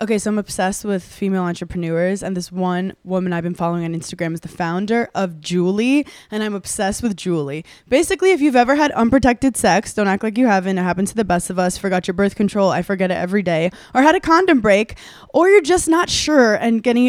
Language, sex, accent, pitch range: English, female, American, 185-250 Hz